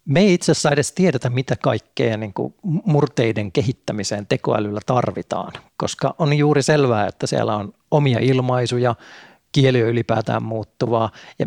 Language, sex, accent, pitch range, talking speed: Finnish, male, native, 115-150 Hz, 135 wpm